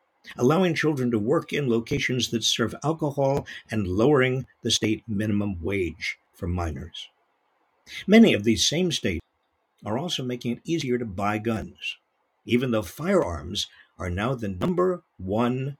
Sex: male